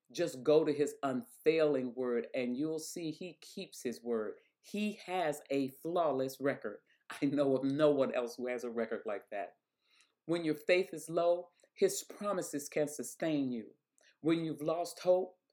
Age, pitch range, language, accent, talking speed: 40-59, 145-190 Hz, English, American, 170 wpm